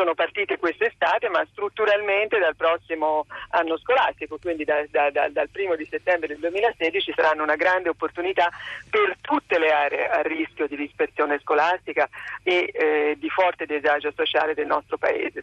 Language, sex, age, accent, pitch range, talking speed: Italian, female, 50-69, native, 150-190 Hz, 160 wpm